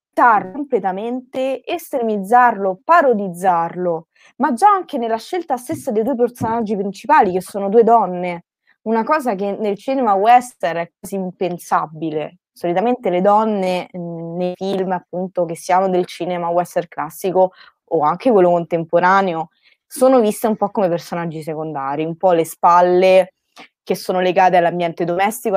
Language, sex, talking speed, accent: Italian, female, 135 wpm, native